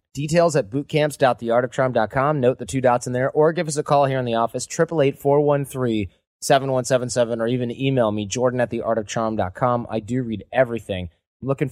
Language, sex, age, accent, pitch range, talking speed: English, male, 30-49, American, 115-145 Hz, 205 wpm